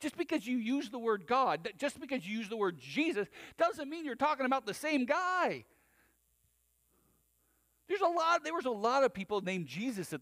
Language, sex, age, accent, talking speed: English, male, 40-59, American, 200 wpm